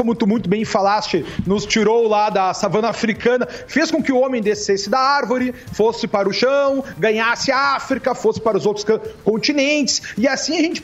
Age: 30-49